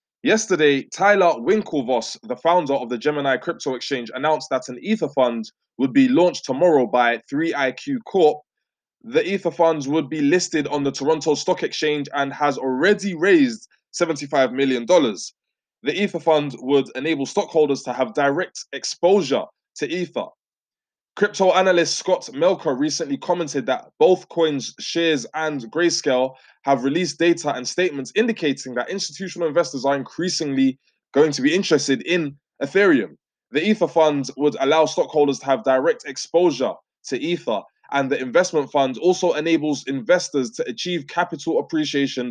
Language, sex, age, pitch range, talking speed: English, male, 20-39, 135-180 Hz, 145 wpm